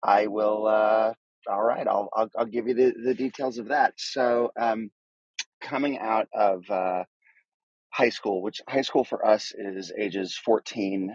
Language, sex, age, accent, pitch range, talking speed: English, male, 30-49, American, 100-115 Hz, 165 wpm